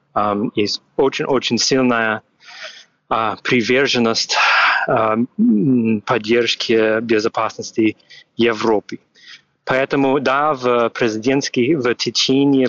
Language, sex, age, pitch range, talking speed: Ukrainian, male, 30-49, 115-145 Hz, 50 wpm